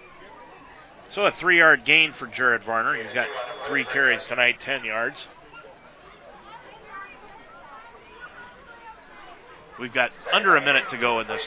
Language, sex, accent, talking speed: English, male, American, 120 wpm